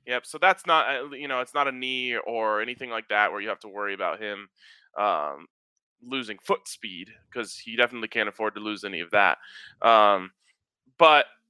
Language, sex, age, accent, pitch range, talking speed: English, male, 20-39, American, 110-140 Hz, 195 wpm